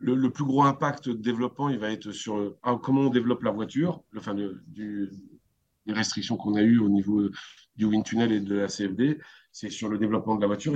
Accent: French